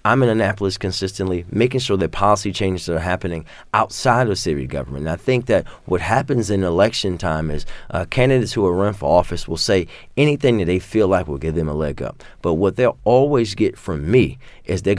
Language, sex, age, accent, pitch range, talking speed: English, male, 30-49, American, 90-105 Hz, 215 wpm